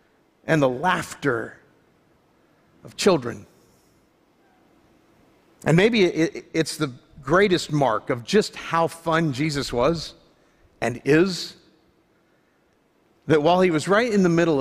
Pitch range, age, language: 140-180 Hz, 40-59, English